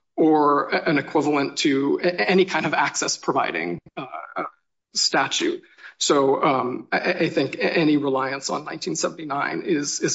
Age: 40-59